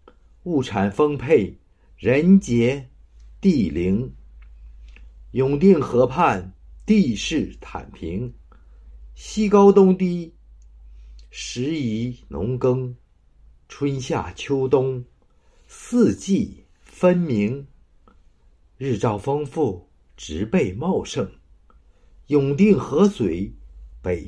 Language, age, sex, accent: Chinese, 50-69, male, native